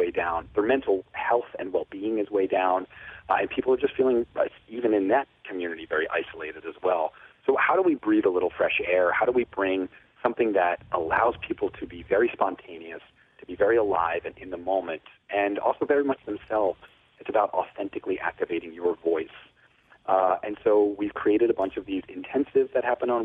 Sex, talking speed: male, 195 wpm